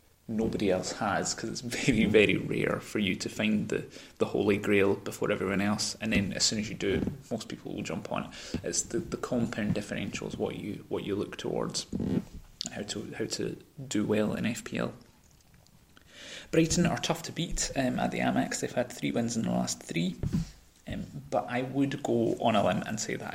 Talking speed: 205 wpm